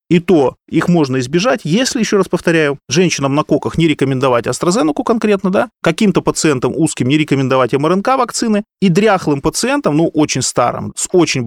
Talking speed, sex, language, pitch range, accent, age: 165 wpm, male, Russian, 145-190 Hz, native, 30-49